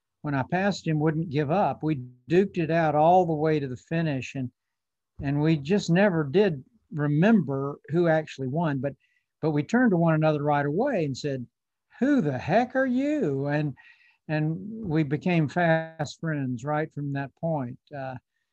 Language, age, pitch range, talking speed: English, 60-79, 140-160 Hz, 175 wpm